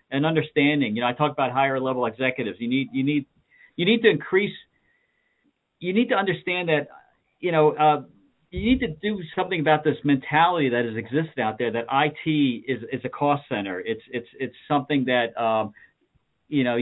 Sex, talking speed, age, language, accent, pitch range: male, 195 wpm, 50-69, English, American, 120-155 Hz